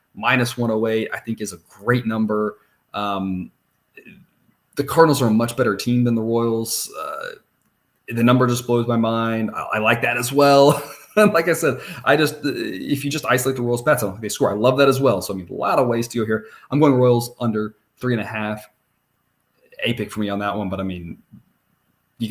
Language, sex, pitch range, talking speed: English, male, 105-130 Hz, 225 wpm